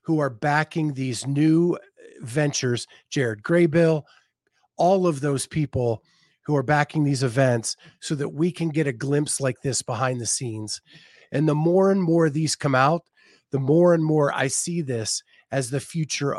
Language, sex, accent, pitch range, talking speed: English, male, American, 130-160 Hz, 175 wpm